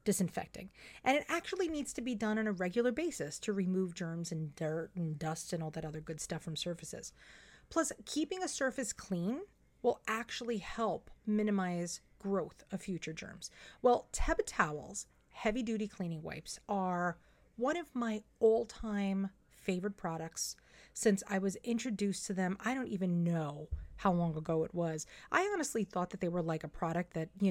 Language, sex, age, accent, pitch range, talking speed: English, female, 30-49, American, 175-230 Hz, 175 wpm